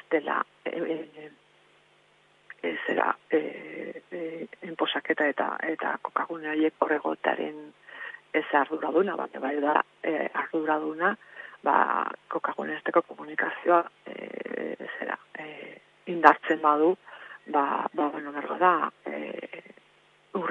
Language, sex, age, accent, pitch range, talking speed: Spanish, female, 40-59, Spanish, 155-175 Hz, 90 wpm